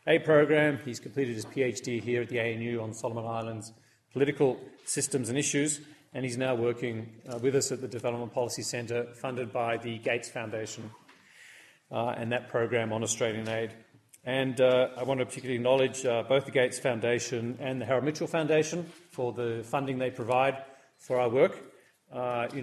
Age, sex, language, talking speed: 30-49, male, English, 180 wpm